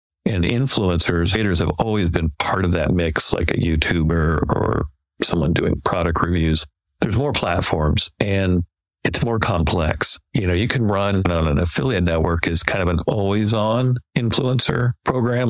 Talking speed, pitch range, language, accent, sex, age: 165 wpm, 80-105 Hz, English, American, male, 50-69